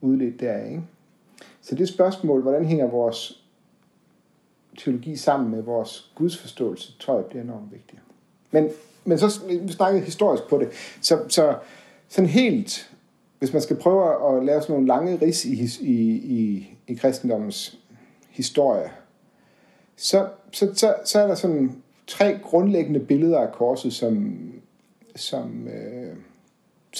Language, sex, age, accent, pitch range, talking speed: Danish, male, 60-79, native, 130-185 Hz, 135 wpm